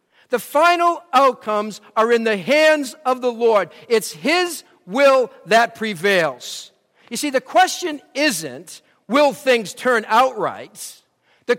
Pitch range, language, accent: 170-275 Hz, English, American